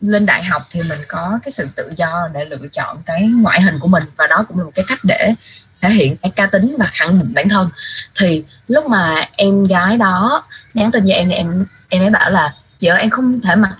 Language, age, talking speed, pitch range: Vietnamese, 20-39, 250 wpm, 175-225 Hz